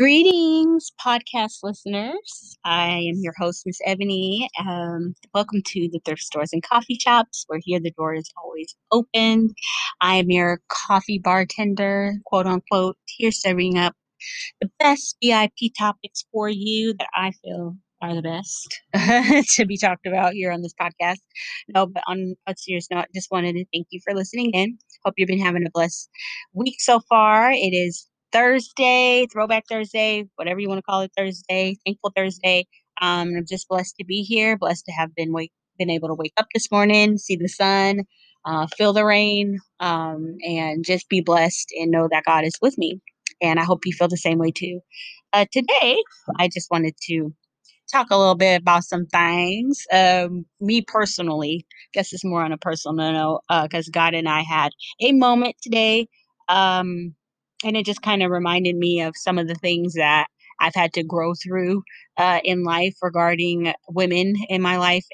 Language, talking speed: English, 185 wpm